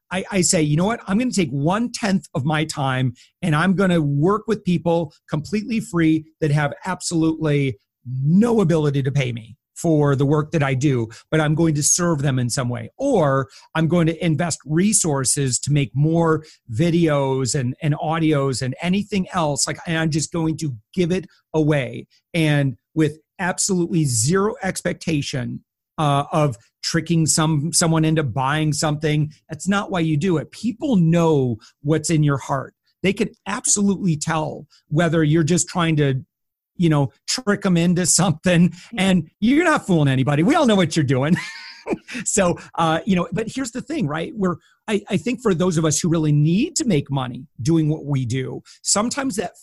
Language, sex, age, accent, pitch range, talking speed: English, male, 40-59, American, 145-185 Hz, 180 wpm